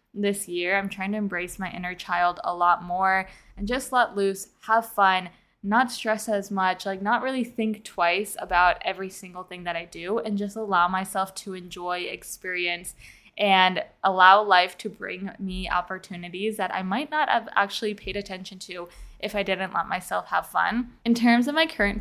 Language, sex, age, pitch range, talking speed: English, female, 10-29, 185-215 Hz, 190 wpm